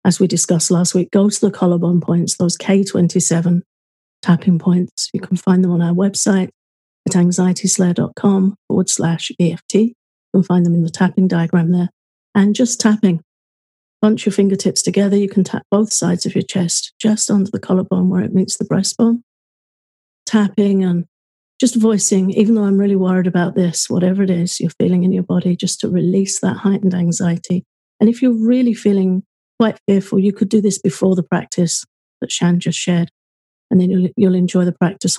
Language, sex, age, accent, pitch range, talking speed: English, female, 40-59, British, 180-205 Hz, 185 wpm